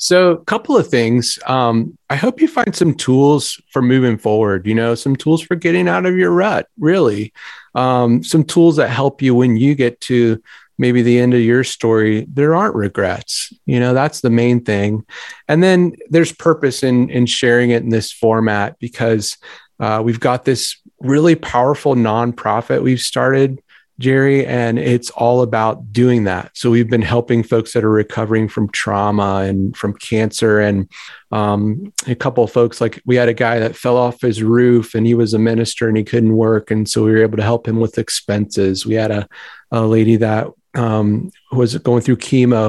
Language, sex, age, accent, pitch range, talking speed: English, male, 30-49, American, 110-130 Hz, 195 wpm